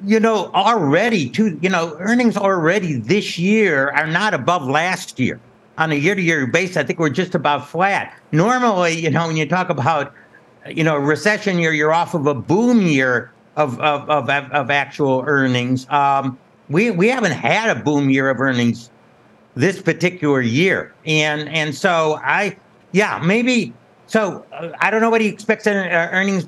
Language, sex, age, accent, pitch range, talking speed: English, male, 60-79, American, 150-205 Hz, 175 wpm